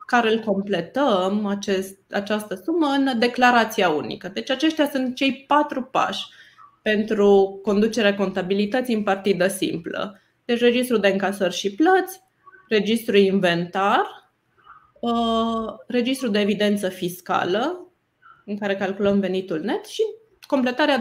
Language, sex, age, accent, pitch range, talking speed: Romanian, female, 20-39, native, 200-255 Hz, 110 wpm